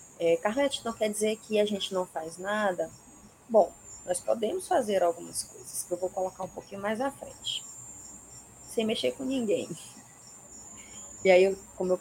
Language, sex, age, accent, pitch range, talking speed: Portuguese, female, 20-39, Brazilian, 175-225 Hz, 165 wpm